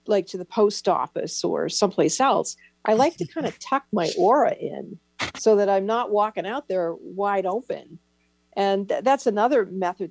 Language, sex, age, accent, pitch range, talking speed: English, female, 50-69, American, 175-230 Hz, 185 wpm